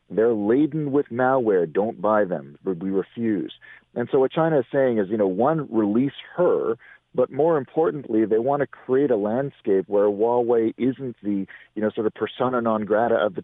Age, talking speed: 40-59, 190 wpm